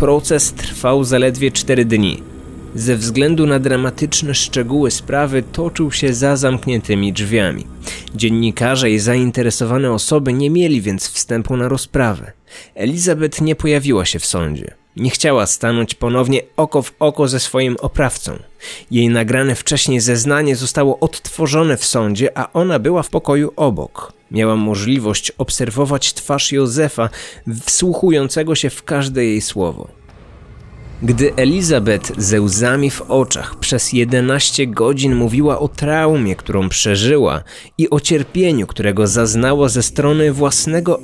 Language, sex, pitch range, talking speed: Polish, male, 115-145 Hz, 130 wpm